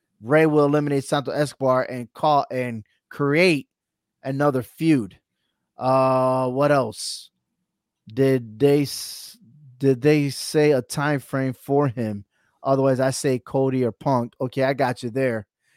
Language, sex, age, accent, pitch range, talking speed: English, male, 30-49, American, 130-165 Hz, 135 wpm